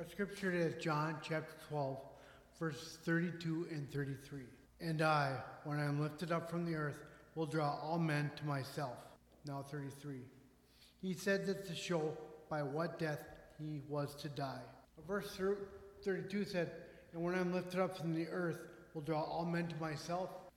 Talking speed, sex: 165 wpm, male